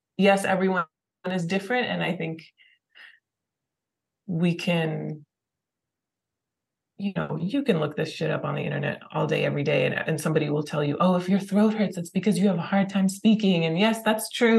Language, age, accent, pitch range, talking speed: English, 20-39, American, 165-210 Hz, 195 wpm